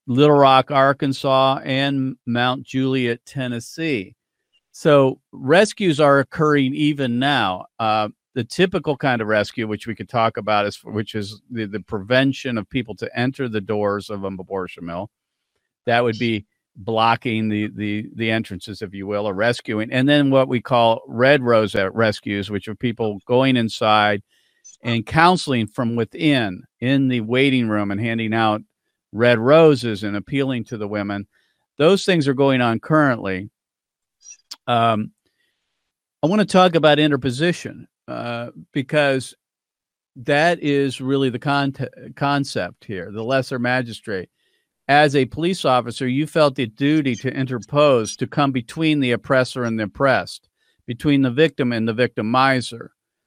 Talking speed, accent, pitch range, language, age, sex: 150 wpm, American, 110-140 Hz, English, 50-69, male